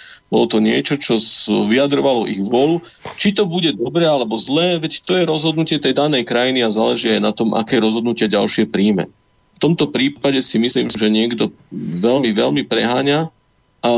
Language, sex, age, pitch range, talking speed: Slovak, male, 40-59, 110-145 Hz, 170 wpm